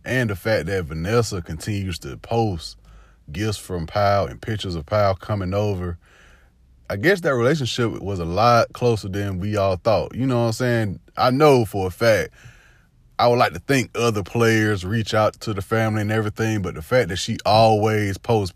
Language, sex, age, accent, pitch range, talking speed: English, male, 20-39, American, 90-110 Hz, 195 wpm